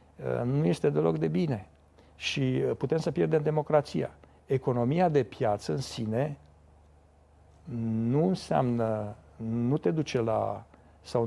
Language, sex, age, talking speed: Romanian, male, 60-79, 115 wpm